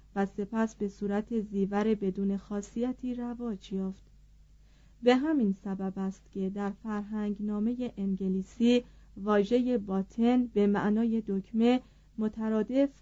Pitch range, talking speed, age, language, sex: 200-245 Hz, 110 wpm, 30-49, Persian, female